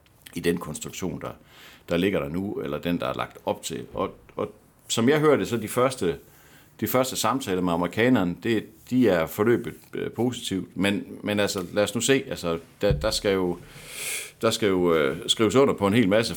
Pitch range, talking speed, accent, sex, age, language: 90-120 Hz, 200 wpm, native, male, 60-79, Danish